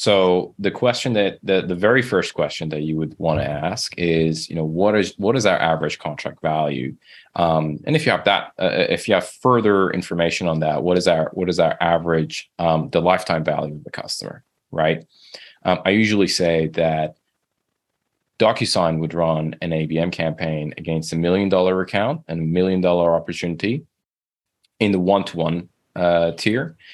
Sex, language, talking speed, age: male, English, 180 wpm, 20-39